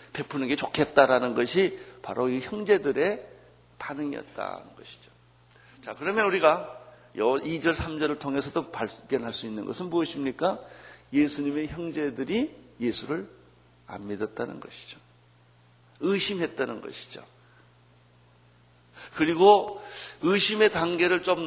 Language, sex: Korean, male